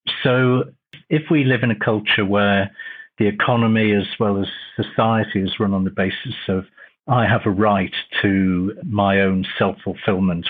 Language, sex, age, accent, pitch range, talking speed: English, male, 50-69, British, 100-130 Hz, 160 wpm